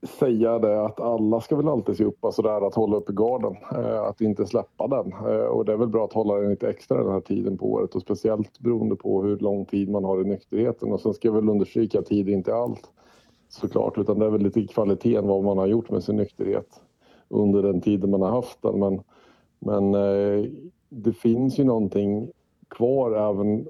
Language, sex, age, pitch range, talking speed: Swedish, male, 50-69, 95-110 Hz, 215 wpm